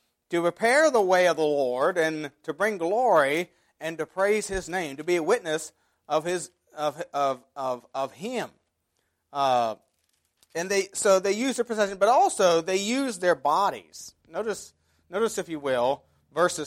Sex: male